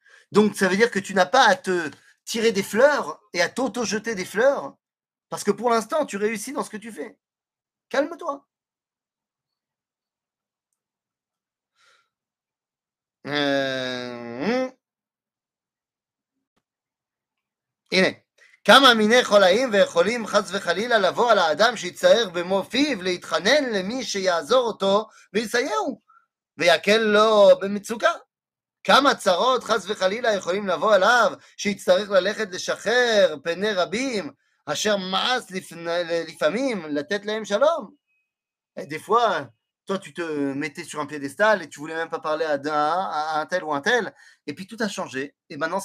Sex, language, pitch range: male, French, 170-250 Hz